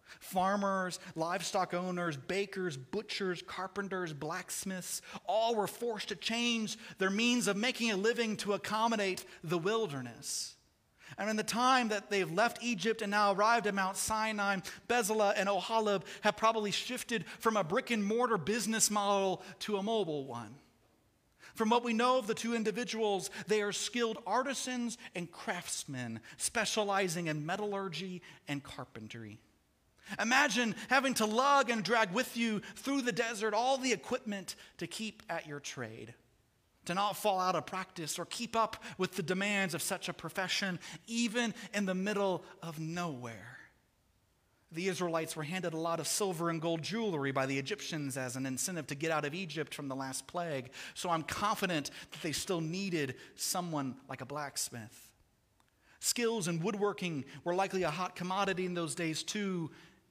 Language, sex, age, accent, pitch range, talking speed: English, male, 40-59, American, 160-220 Hz, 160 wpm